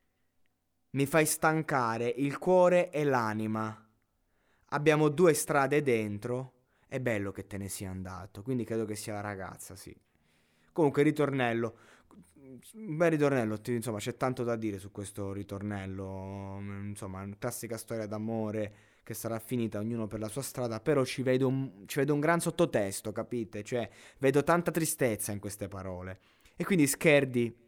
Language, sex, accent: Italian, male, native